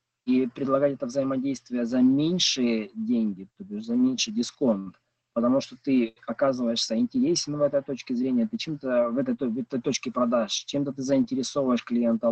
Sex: male